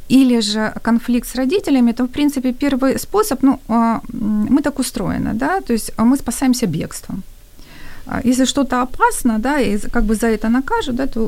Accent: native